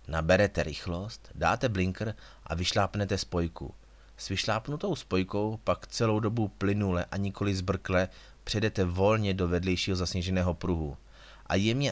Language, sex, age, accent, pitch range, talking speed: Czech, male, 30-49, native, 90-105 Hz, 125 wpm